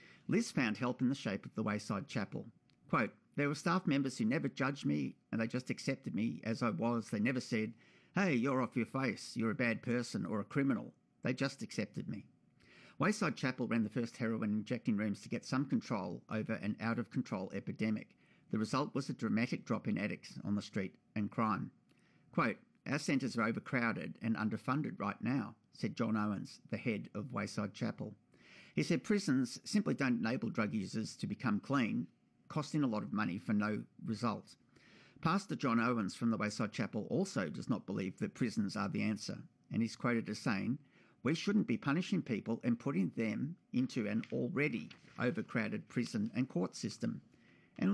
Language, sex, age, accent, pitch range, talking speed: English, male, 50-69, Australian, 110-140 Hz, 190 wpm